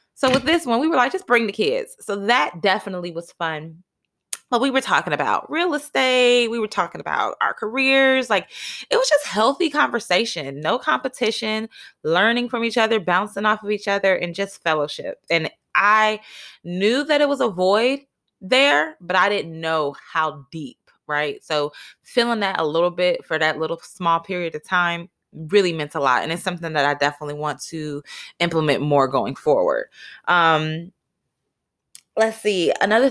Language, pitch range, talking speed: English, 155-220 Hz, 180 wpm